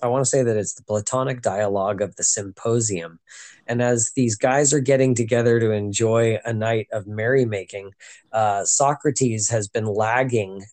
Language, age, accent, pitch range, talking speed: English, 20-39, American, 110-140 Hz, 160 wpm